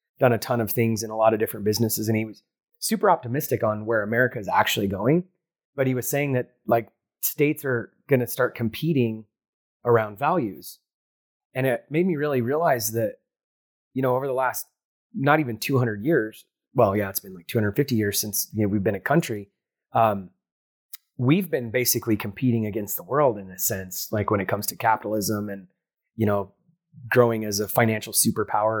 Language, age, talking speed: English, 30-49, 190 wpm